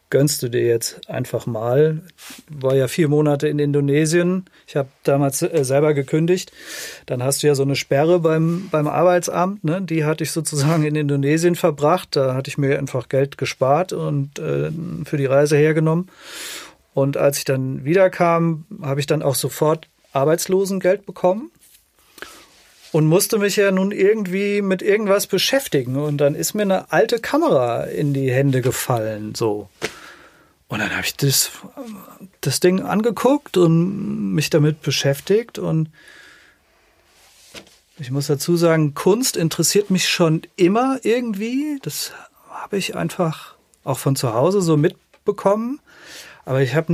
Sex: male